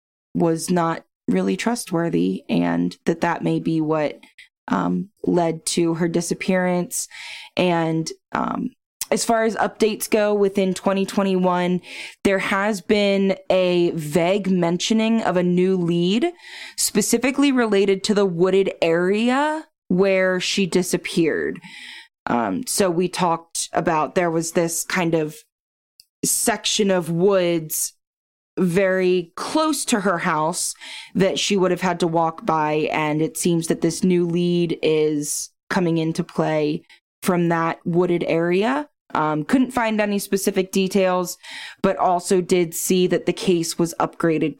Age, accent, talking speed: 20-39, American, 135 wpm